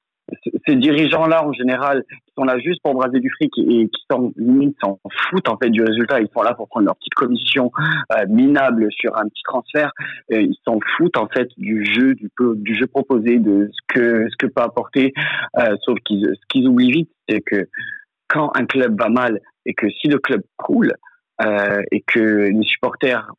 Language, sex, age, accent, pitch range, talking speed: French, male, 40-59, French, 105-130 Hz, 205 wpm